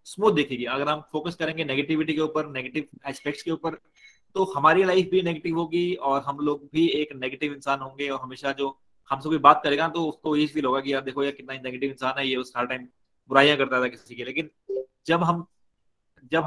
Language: Hindi